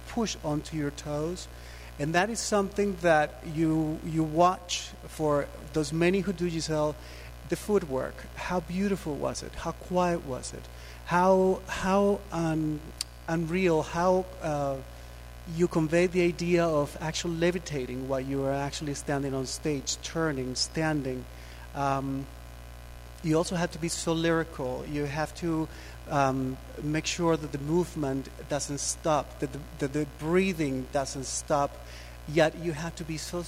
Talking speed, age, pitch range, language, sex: 145 wpm, 40-59, 130-165 Hz, English, male